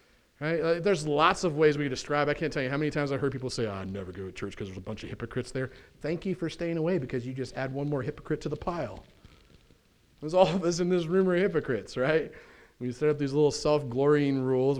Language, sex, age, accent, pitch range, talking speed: English, male, 40-59, American, 120-155 Hz, 255 wpm